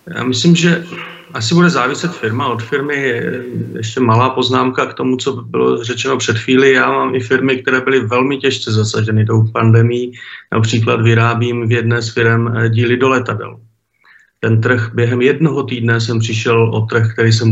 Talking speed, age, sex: 175 wpm, 40-59, male